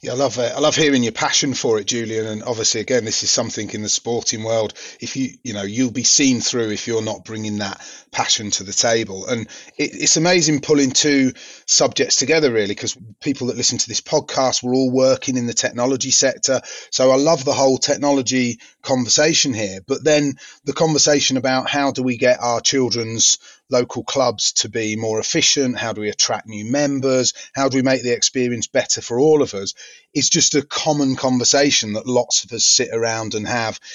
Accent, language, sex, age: British, English, male, 30-49